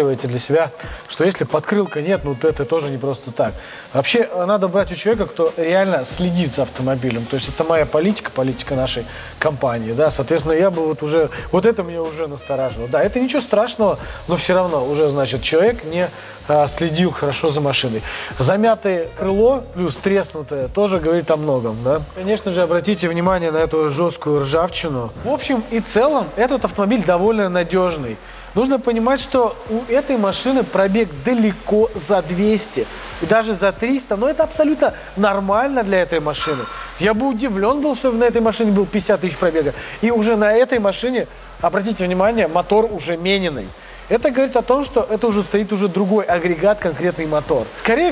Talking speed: 175 wpm